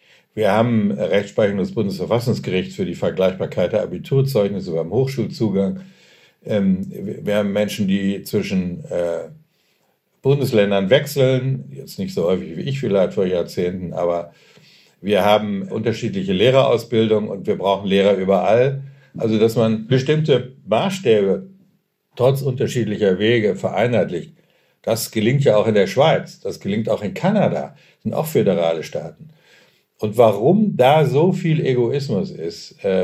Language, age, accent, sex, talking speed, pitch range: German, 60-79, German, male, 125 wpm, 110-155 Hz